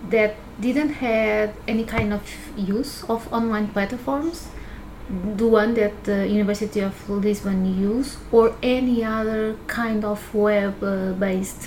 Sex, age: female, 30-49